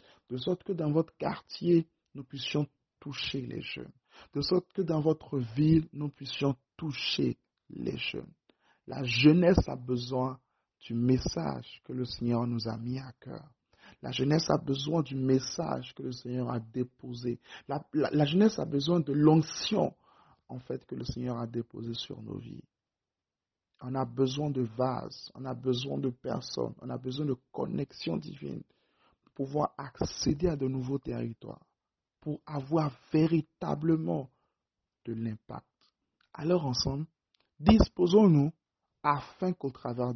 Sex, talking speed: male, 145 wpm